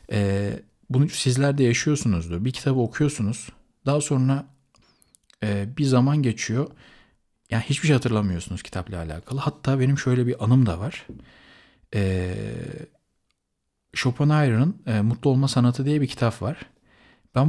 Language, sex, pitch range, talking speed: Turkish, male, 105-140 Hz, 135 wpm